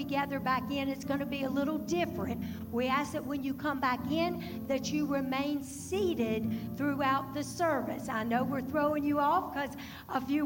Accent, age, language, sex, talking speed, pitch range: American, 60-79, English, female, 195 wpm, 230-285 Hz